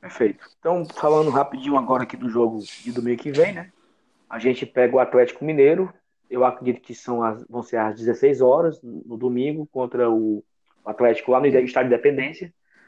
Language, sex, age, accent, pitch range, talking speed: Portuguese, male, 20-39, Brazilian, 125-165 Hz, 185 wpm